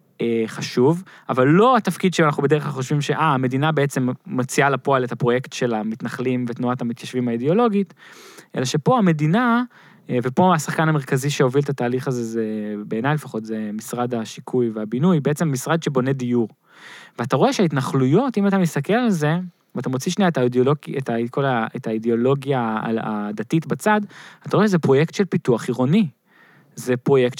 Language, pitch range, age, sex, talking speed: Hebrew, 120-160 Hz, 20-39, male, 150 wpm